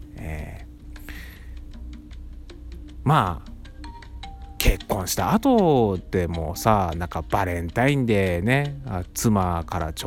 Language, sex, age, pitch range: Japanese, male, 30-49, 85-130 Hz